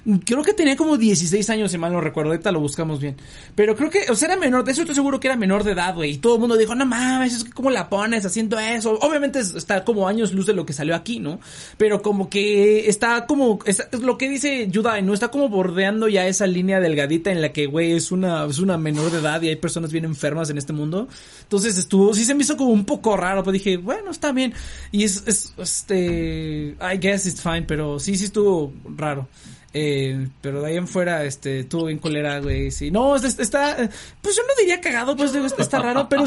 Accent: Mexican